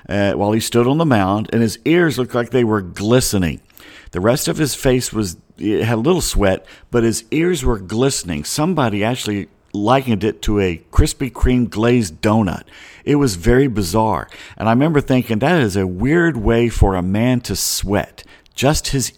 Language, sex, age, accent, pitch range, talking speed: English, male, 50-69, American, 100-130 Hz, 190 wpm